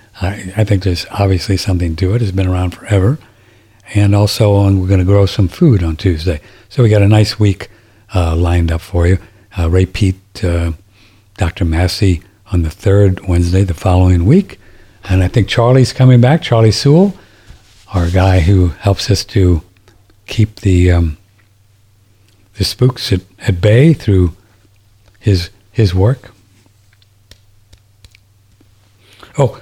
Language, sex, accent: English, male, American